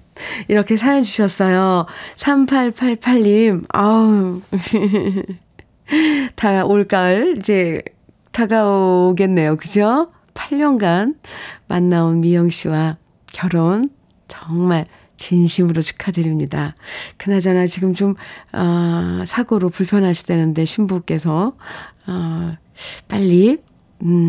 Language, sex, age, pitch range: Korean, female, 40-59, 175-240 Hz